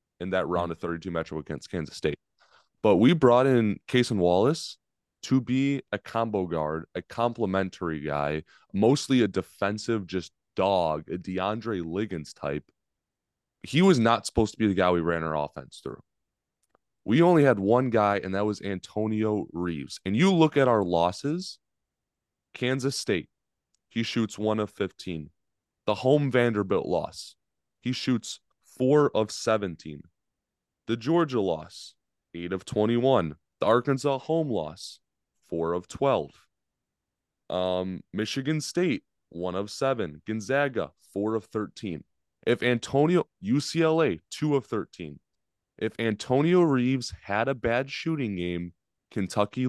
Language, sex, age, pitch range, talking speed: English, male, 20-39, 90-130 Hz, 140 wpm